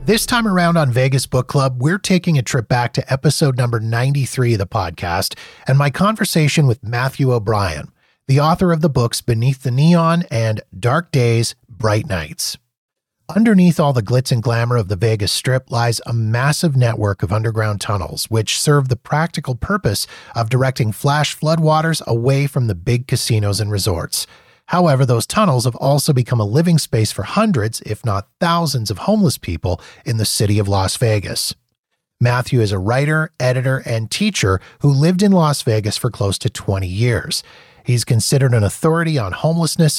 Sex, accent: male, American